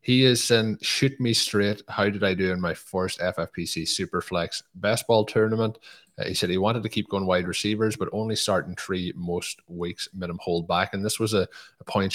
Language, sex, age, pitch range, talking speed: English, male, 20-39, 90-105 Hz, 215 wpm